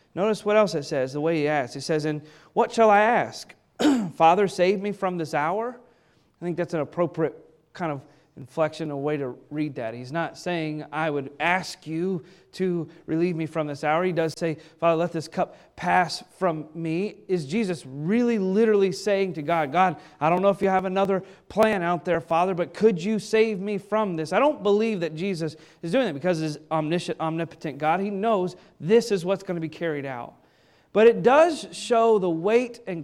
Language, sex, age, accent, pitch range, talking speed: English, male, 30-49, American, 155-205 Hz, 205 wpm